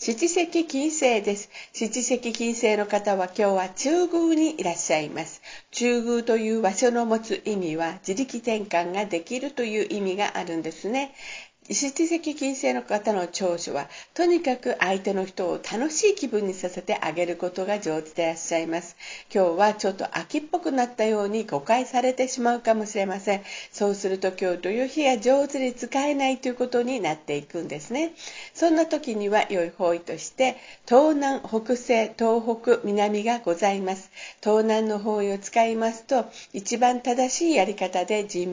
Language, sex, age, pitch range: Japanese, female, 50-69, 195-255 Hz